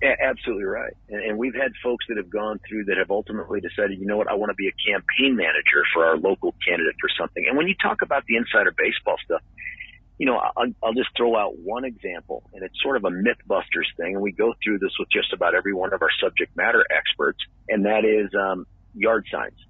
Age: 50-69